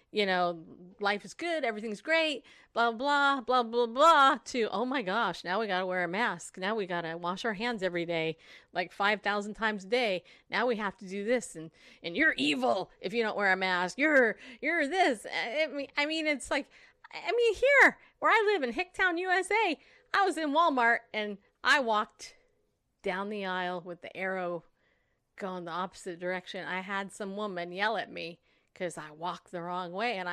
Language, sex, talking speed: English, female, 200 wpm